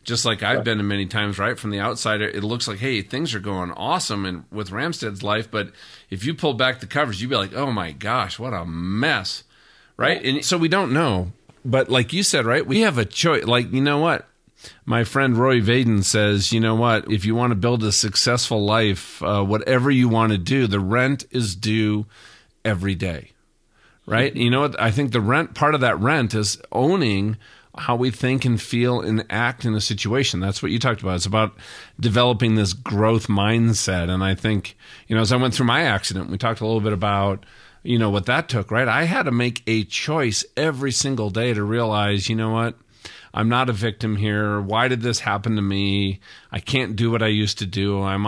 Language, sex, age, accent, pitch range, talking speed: English, male, 40-59, American, 100-125 Hz, 220 wpm